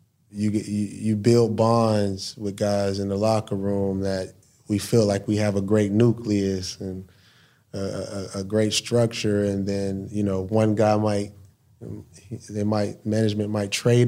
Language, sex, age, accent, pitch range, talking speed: English, male, 30-49, American, 100-120 Hz, 160 wpm